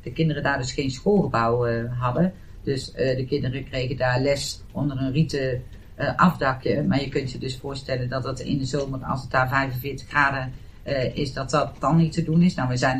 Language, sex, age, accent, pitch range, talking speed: Dutch, female, 50-69, Dutch, 125-150 Hz, 220 wpm